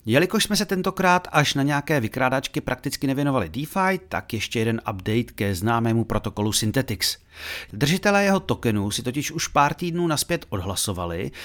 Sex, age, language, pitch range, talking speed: male, 40-59, Czech, 105-150 Hz, 150 wpm